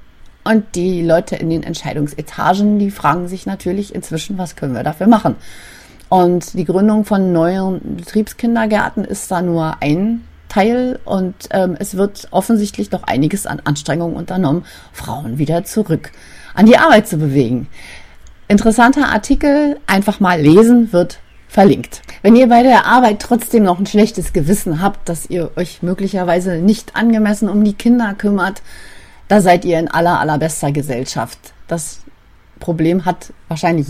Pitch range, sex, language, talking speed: 160-205 Hz, female, German, 150 wpm